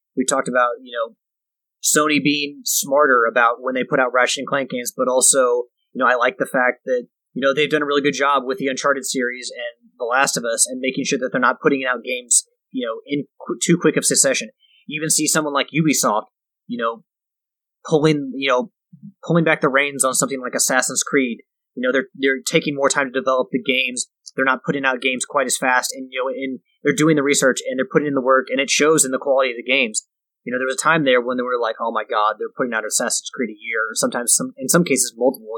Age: 30-49